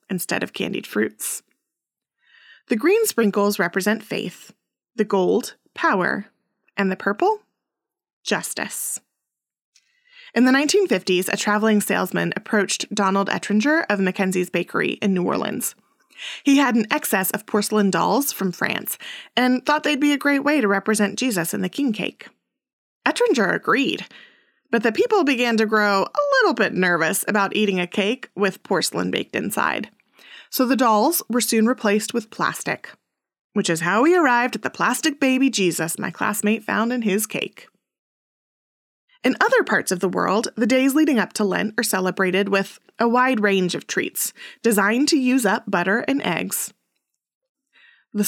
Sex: female